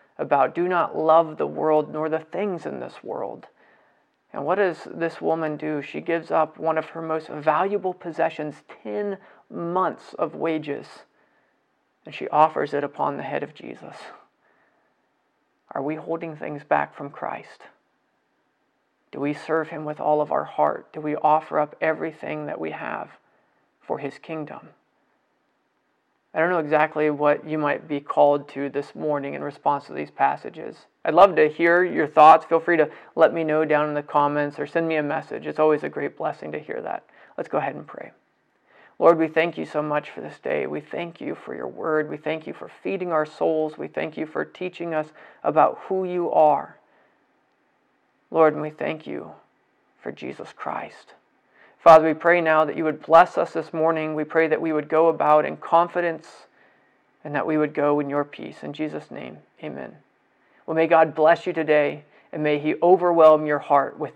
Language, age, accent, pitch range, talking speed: English, 40-59, American, 150-165 Hz, 190 wpm